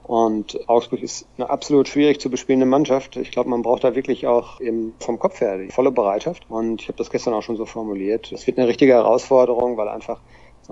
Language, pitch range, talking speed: German, 110-120 Hz, 225 wpm